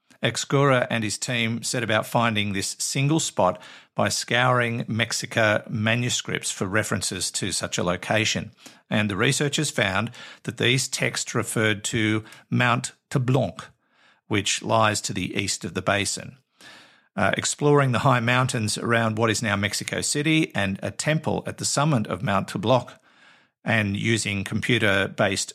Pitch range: 105-125 Hz